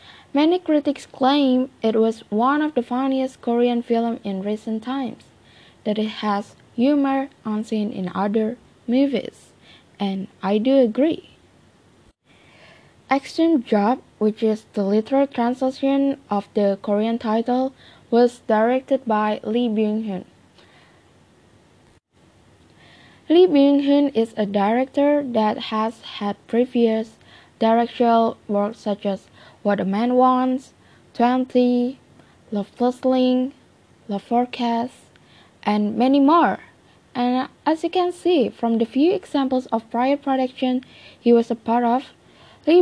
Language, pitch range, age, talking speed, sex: English, 220-270 Hz, 10-29, 120 wpm, female